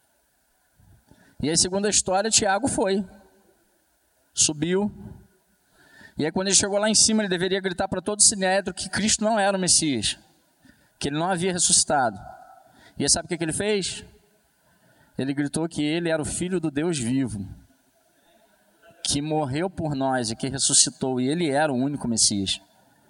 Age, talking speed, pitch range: 20-39, 170 wpm, 135-185 Hz